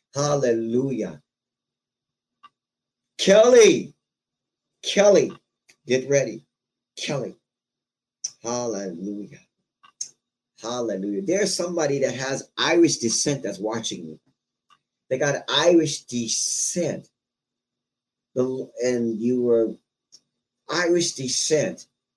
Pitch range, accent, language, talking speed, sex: 115-145 Hz, American, English, 70 wpm, male